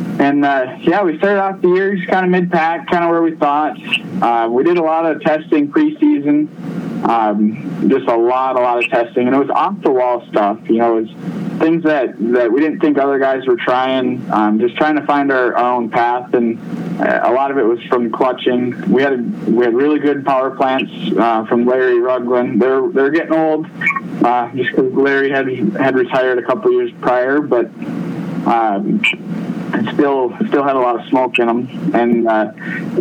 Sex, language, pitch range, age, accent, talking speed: male, English, 125-170 Hz, 20-39, American, 200 wpm